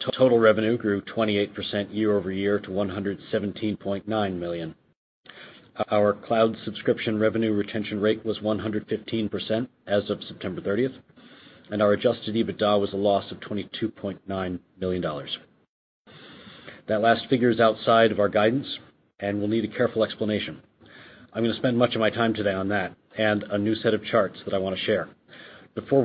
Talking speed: 160 wpm